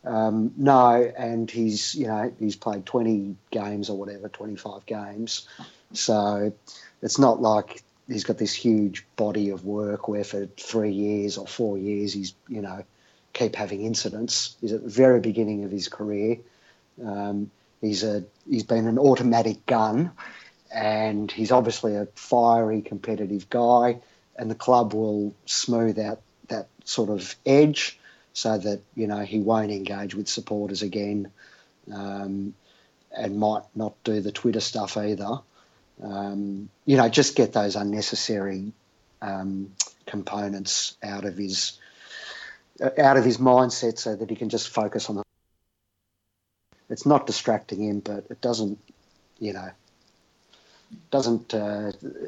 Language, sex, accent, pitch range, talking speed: English, male, Australian, 100-115 Hz, 140 wpm